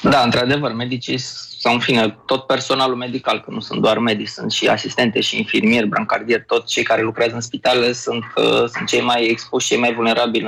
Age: 20-39